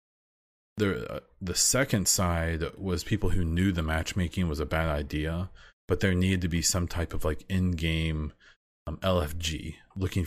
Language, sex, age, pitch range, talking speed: English, male, 30-49, 80-95 Hz, 150 wpm